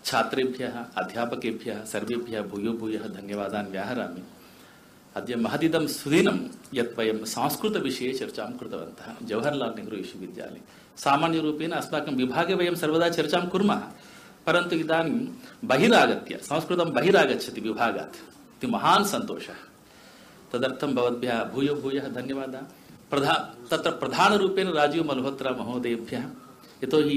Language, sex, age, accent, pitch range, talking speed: English, male, 60-79, Indian, 130-170 Hz, 105 wpm